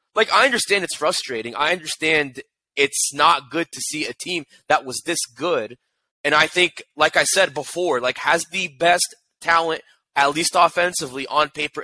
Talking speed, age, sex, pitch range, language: 175 wpm, 20-39, male, 140-185 Hz, English